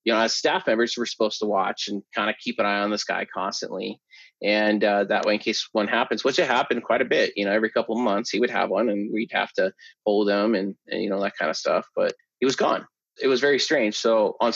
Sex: male